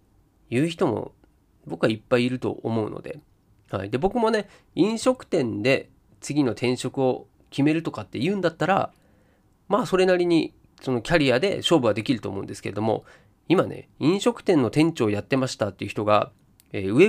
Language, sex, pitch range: Japanese, male, 120-200 Hz